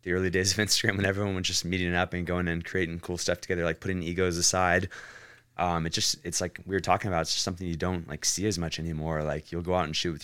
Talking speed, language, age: 280 wpm, English, 20-39